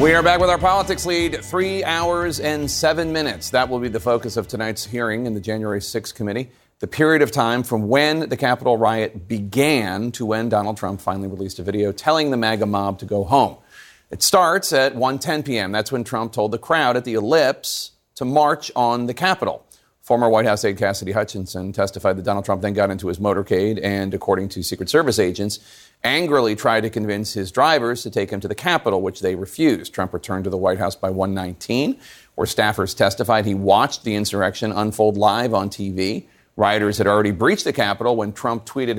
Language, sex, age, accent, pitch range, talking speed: English, male, 40-59, American, 100-140 Hz, 205 wpm